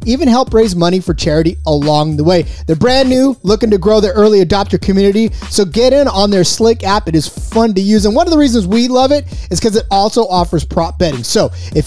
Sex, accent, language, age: male, American, English, 30-49